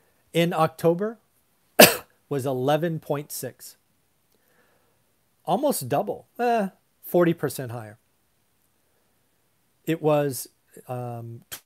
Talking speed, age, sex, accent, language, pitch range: 60 wpm, 40-59, male, American, English, 125-165 Hz